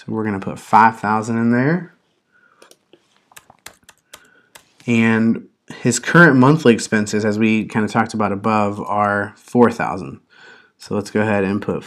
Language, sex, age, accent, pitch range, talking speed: English, male, 30-49, American, 105-165 Hz, 140 wpm